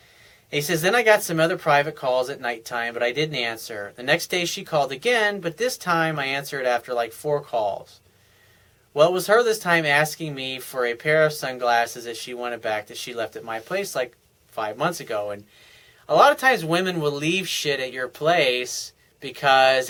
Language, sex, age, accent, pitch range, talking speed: English, male, 30-49, American, 125-155 Hz, 210 wpm